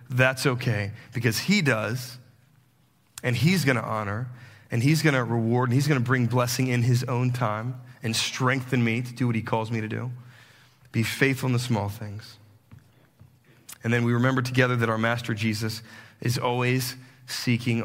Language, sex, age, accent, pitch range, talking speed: English, male, 30-49, American, 115-130 Hz, 170 wpm